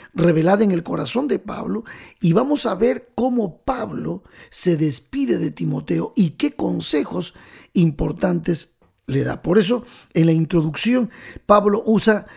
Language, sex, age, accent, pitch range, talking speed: Spanish, male, 50-69, Mexican, 160-215 Hz, 140 wpm